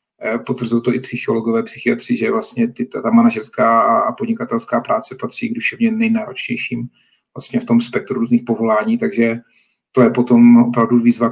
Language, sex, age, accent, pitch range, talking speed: Czech, male, 40-59, native, 120-135 Hz, 150 wpm